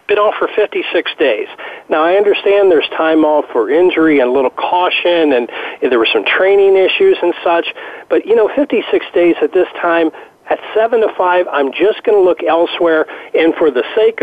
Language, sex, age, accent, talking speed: English, male, 40-59, American, 200 wpm